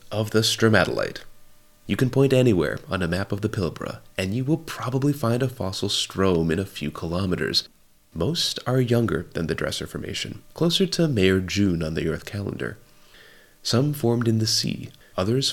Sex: male